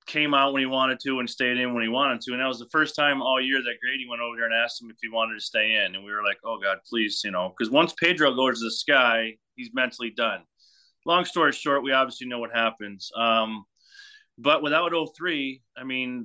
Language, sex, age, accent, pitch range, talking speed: English, male, 30-49, American, 115-135 Hz, 255 wpm